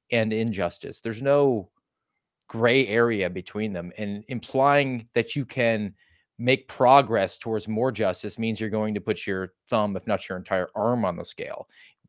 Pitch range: 100-120 Hz